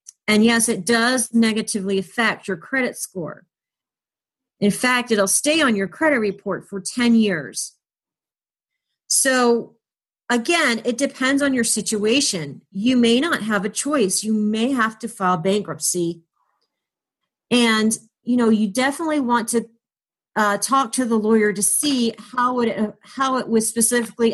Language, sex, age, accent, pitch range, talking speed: English, female, 40-59, American, 200-245 Hz, 145 wpm